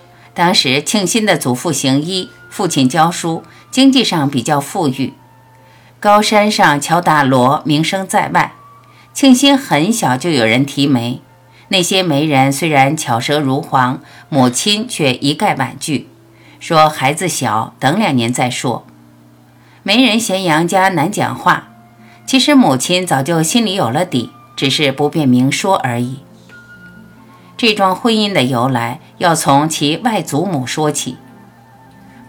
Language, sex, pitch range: Chinese, female, 130-190 Hz